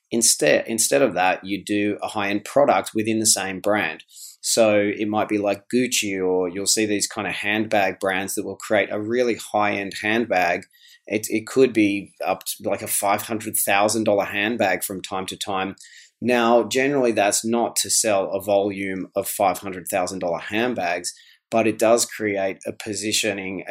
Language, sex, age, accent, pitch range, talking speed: English, male, 30-49, Australian, 100-115 Hz, 180 wpm